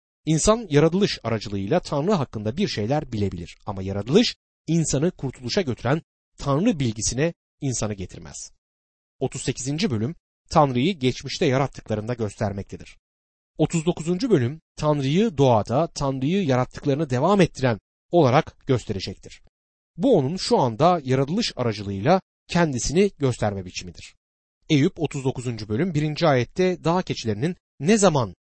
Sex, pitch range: male, 105-165 Hz